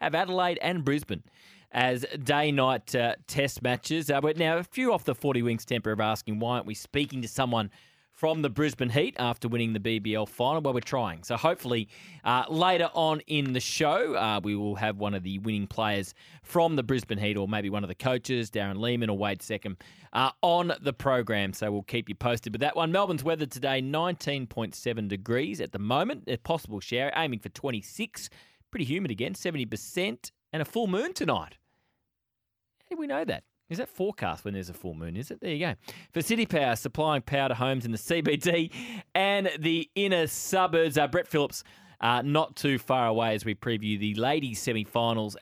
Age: 20-39